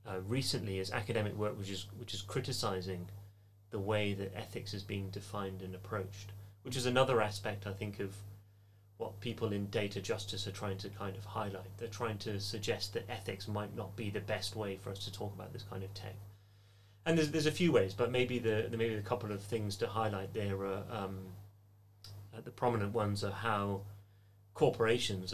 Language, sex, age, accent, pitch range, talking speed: English, male, 30-49, British, 100-110 Hz, 195 wpm